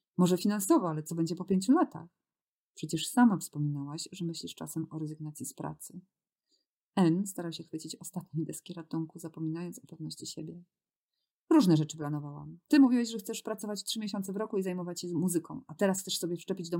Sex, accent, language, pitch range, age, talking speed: female, native, Polish, 160-200 Hz, 30-49, 180 wpm